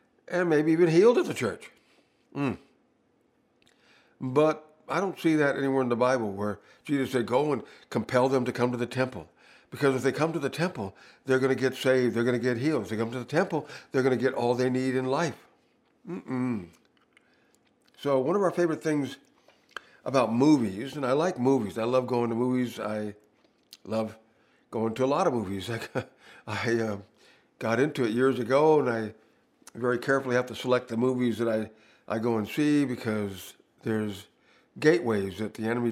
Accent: American